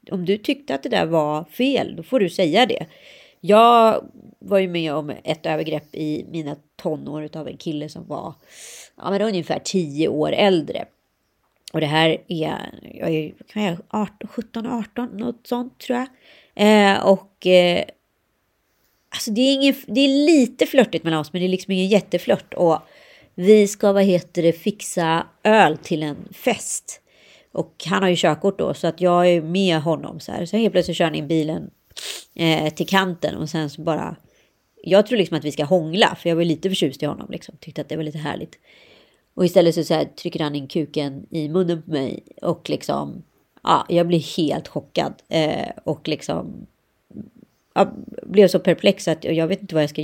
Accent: native